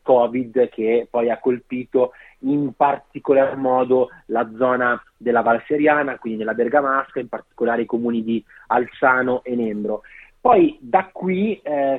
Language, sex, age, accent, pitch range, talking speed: Italian, male, 30-49, native, 120-145 Hz, 140 wpm